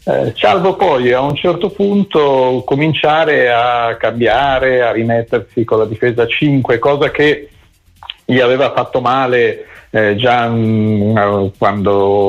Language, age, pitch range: Italian, 50-69, 100-125 Hz